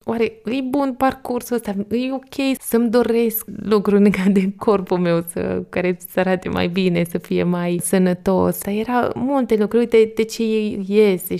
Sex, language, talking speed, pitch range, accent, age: female, Romanian, 175 wpm, 185-220 Hz, native, 20-39